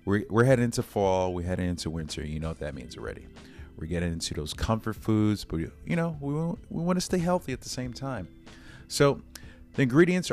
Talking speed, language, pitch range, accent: 225 wpm, English, 80-105 Hz, American